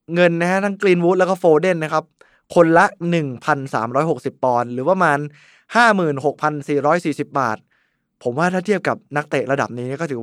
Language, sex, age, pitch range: Thai, male, 20-39, 140-175 Hz